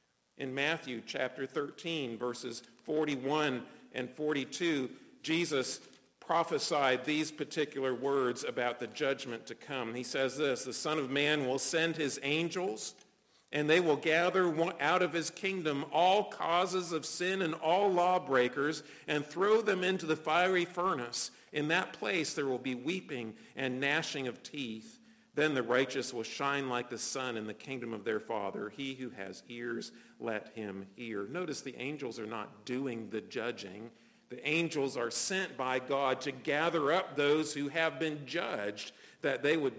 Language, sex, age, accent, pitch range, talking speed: English, male, 50-69, American, 120-160 Hz, 165 wpm